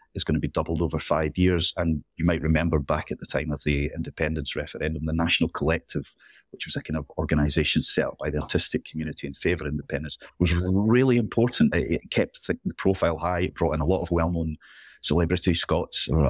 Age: 30-49